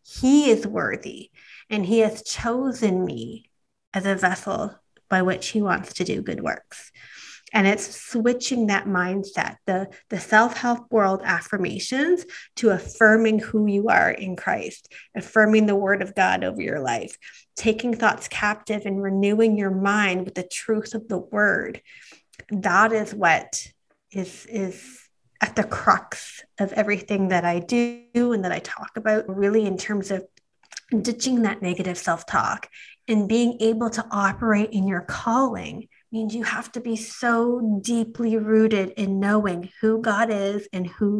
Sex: female